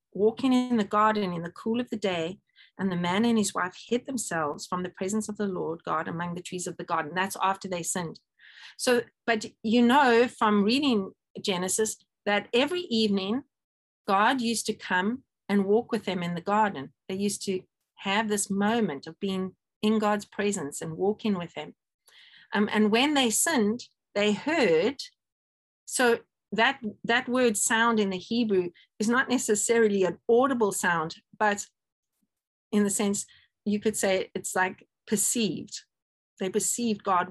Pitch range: 185-225 Hz